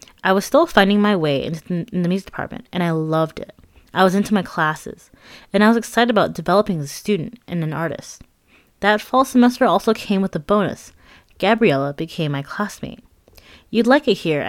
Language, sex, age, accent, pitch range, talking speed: English, female, 20-39, American, 160-220 Hz, 195 wpm